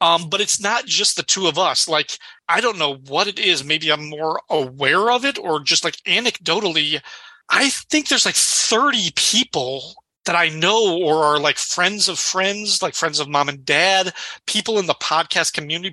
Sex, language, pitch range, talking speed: male, English, 150-190 Hz, 195 wpm